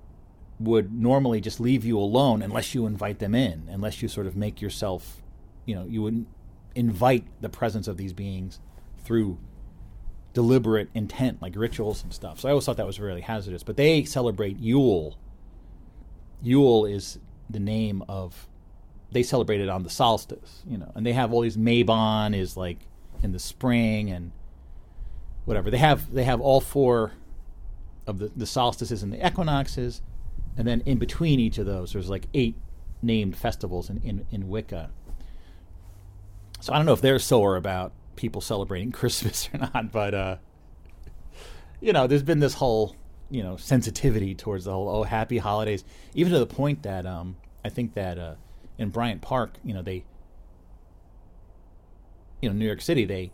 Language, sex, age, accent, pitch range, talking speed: English, male, 40-59, American, 90-115 Hz, 170 wpm